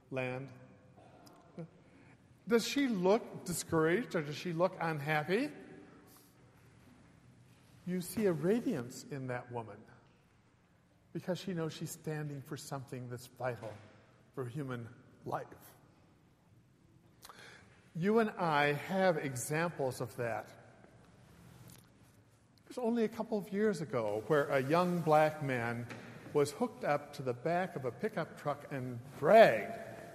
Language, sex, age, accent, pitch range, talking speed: English, male, 50-69, American, 130-190 Hz, 120 wpm